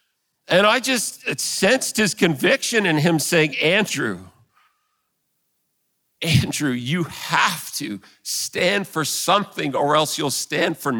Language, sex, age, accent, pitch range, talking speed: English, male, 50-69, American, 130-175 Hz, 120 wpm